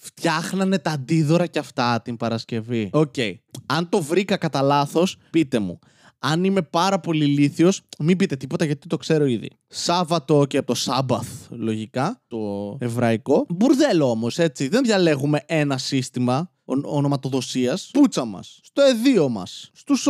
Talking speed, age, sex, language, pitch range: 150 wpm, 20-39, male, Greek, 135-205 Hz